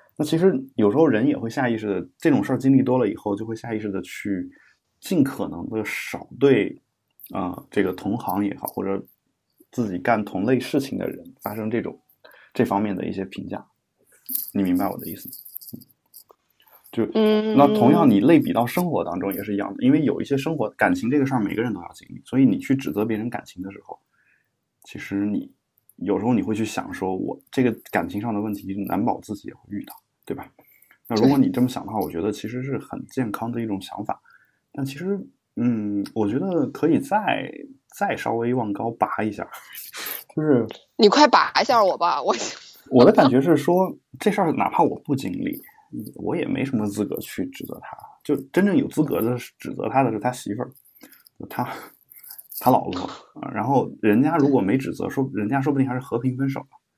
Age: 20-39